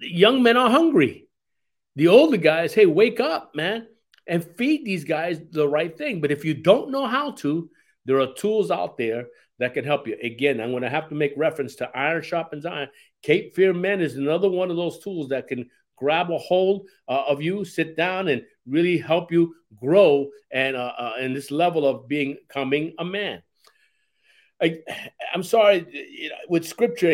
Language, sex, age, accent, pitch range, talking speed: English, male, 50-69, American, 145-225 Hz, 190 wpm